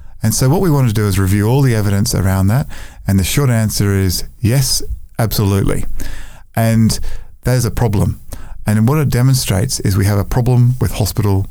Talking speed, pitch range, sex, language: 190 wpm, 95-115 Hz, male, English